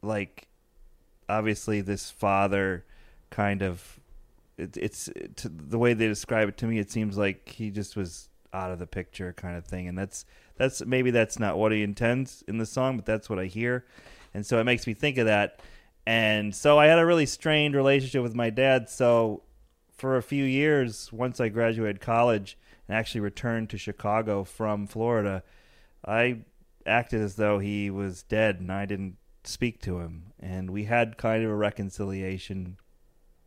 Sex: male